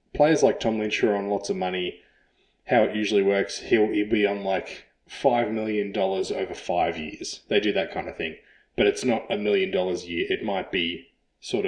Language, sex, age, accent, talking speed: English, male, 20-39, Australian, 210 wpm